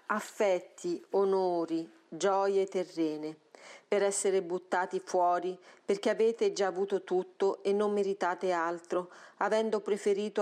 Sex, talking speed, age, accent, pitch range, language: female, 110 wpm, 40-59, native, 175-205 Hz, Italian